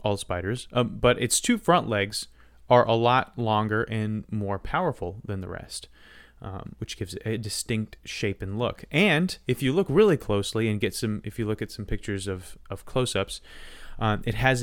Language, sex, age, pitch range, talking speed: English, male, 30-49, 100-125 Hz, 195 wpm